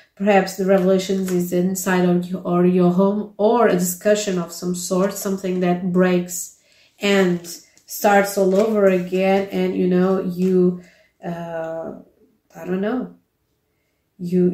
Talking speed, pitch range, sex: 135 wpm, 180-220 Hz, female